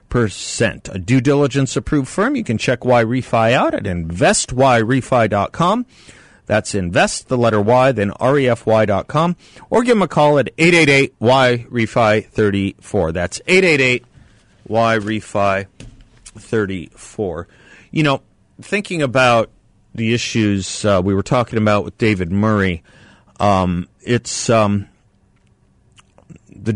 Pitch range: 100-125 Hz